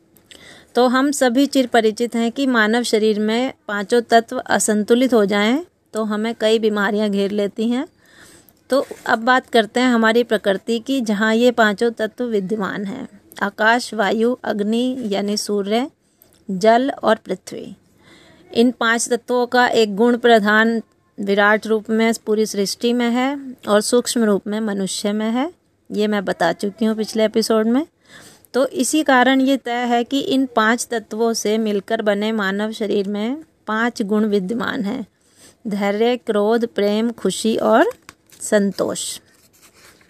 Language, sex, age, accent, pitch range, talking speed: Hindi, female, 30-49, native, 215-245 Hz, 150 wpm